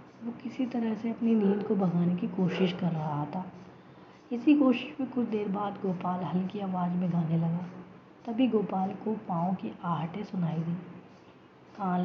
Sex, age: female, 20-39